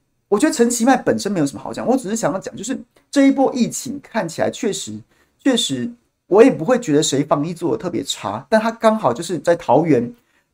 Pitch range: 140-220 Hz